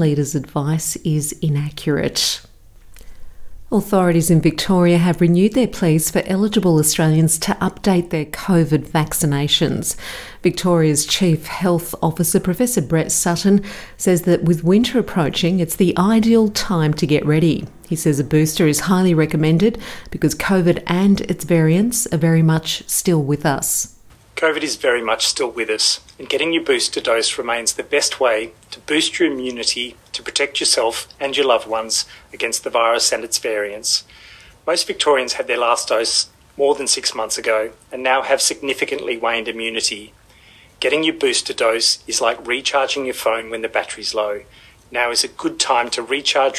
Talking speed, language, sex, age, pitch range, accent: 160 wpm, English, female, 40-59, 145-185 Hz, Australian